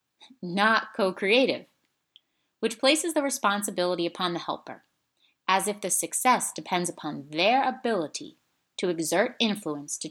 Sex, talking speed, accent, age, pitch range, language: female, 125 wpm, American, 30-49, 165-225 Hz, English